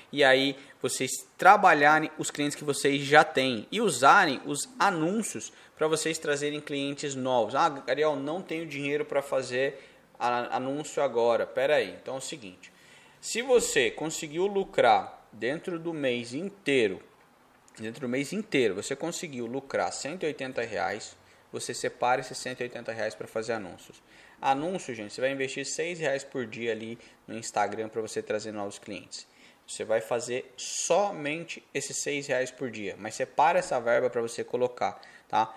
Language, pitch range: Portuguese, 125-160 Hz